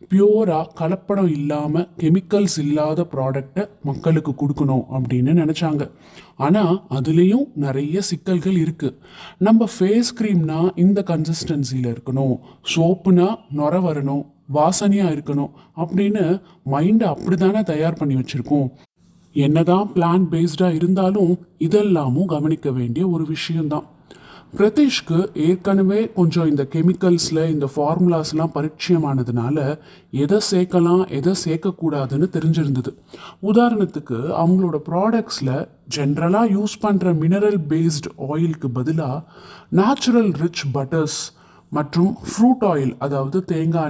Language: Tamil